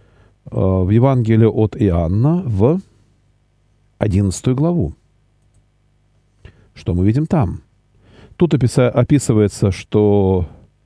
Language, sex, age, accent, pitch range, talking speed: Russian, male, 40-59, native, 105-135 Hz, 75 wpm